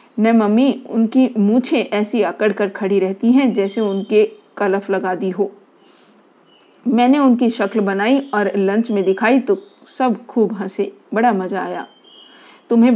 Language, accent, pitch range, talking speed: Hindi, native, 190-235 Hz, 150 wpm